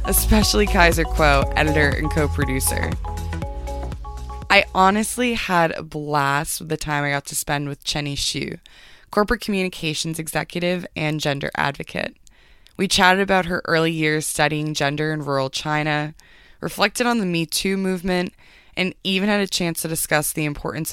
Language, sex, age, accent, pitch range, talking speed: English, female, 20-39, American, 145-180 Hz, 150 wpm